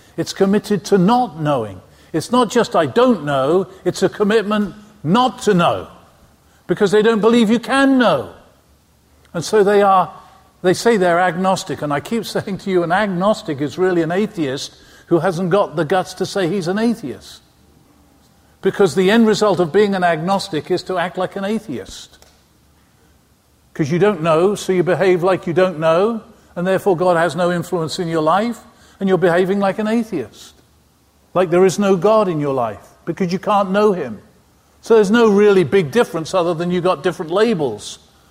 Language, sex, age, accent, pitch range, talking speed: English, male, 50-69, British, 145-205 Hz, 185 wpm